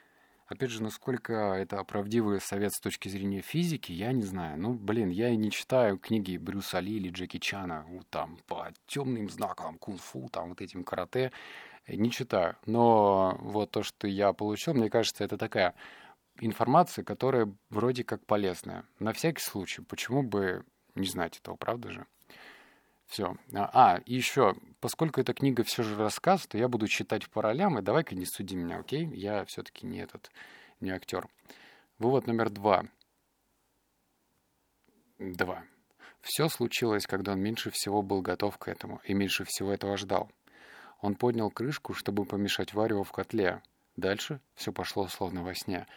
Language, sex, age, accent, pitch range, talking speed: Russian, male, 20-39, native, 95-115 Hz, 160 wpm